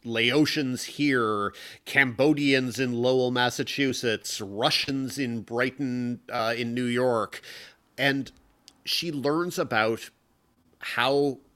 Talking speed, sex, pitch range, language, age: 95 wpm, male, 105-130 Hz, English, 30-49